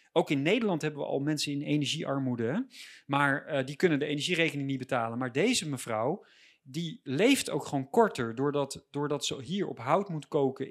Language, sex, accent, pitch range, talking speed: Dutch, male, Dutch, 135-185 Hz, 185 wpm